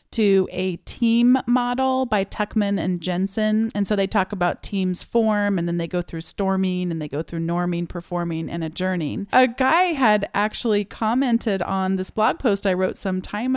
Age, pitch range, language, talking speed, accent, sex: 30-49, 175-210 Hz, English, 185 wpm, American, female